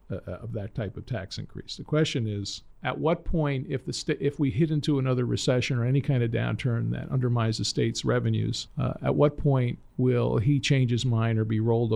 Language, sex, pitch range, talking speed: English, male, 115-145 Hz, 215 wpm